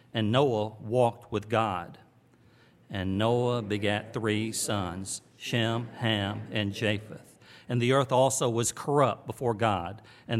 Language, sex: English, male